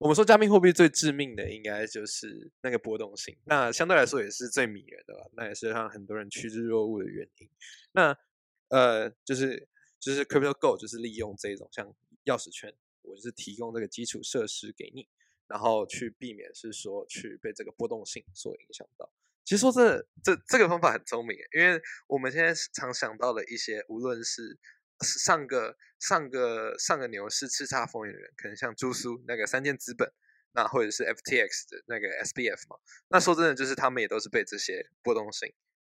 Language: Chinese